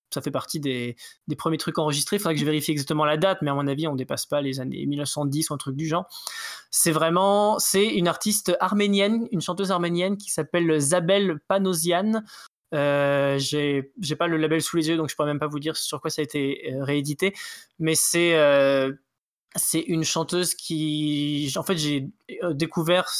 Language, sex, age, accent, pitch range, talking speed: French, male, 20-39, French, 145-175 Hz, 205 wpm